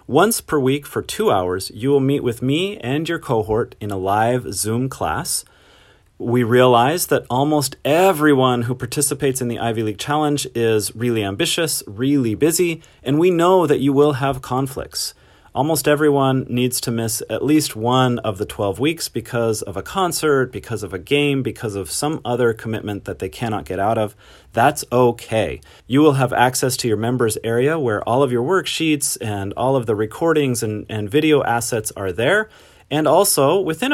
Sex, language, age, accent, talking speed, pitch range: male, English, 30-49, American, 185 wpm, 110-145 Hz